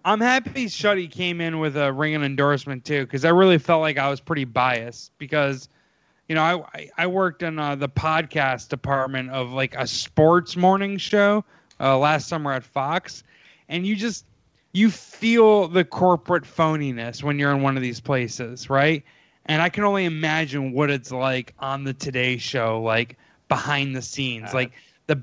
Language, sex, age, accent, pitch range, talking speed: English, male, 20-39, American, 135-170 Hz, 180 wpm